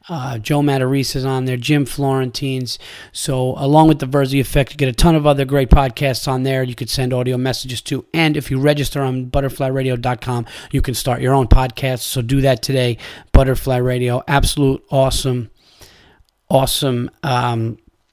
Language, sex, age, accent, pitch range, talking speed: English, male, 30-49, American, 125-140 Hz, 170 wpm